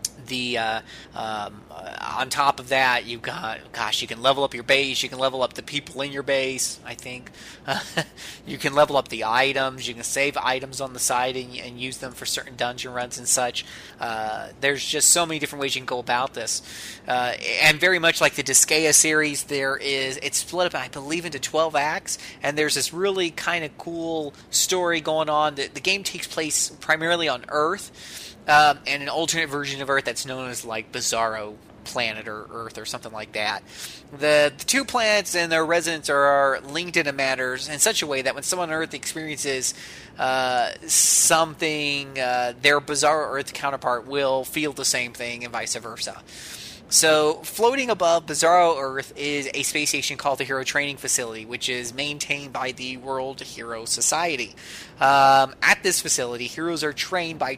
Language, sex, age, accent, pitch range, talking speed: English, male, 30-49, American, 125-155 Hz, 195 wpm